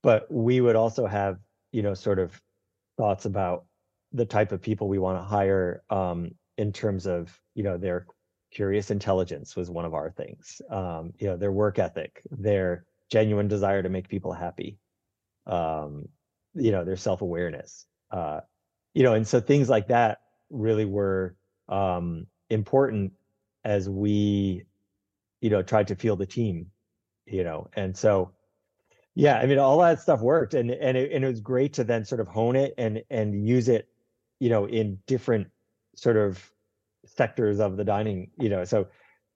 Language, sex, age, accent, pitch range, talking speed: English, male, 30-49, American, 95-110 Hz, 175 wpm